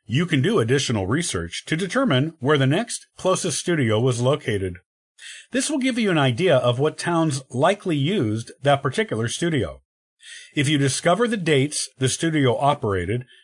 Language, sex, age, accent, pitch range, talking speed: English, male, 50-69, American, 115-165 Hz, 160 wpm